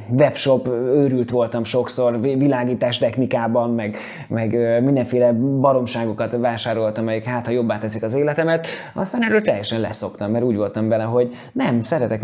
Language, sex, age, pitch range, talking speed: Hungarian, male, 20-39, 110-125 Hz, 135 wpm